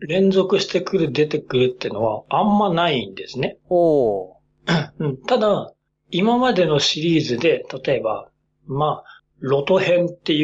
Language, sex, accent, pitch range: Japanese, male, native, 150-230 Hz